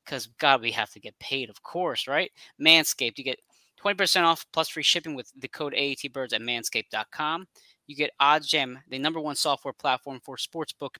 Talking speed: 190 wpm